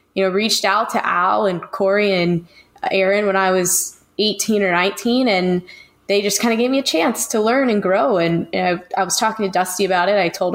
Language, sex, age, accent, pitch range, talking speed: English, female, 10-29, American, 175-205 Hz, 230 wpm